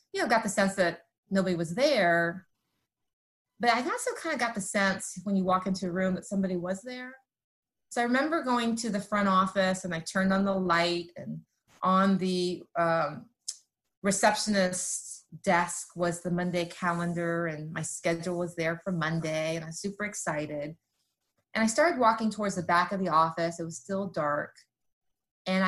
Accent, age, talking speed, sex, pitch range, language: American, 30-49, 180 wpm, female, 170-225 Hz, English